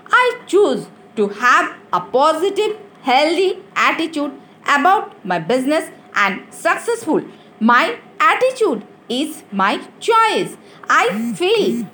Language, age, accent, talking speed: Hindi, 50-69, native, 100 wpm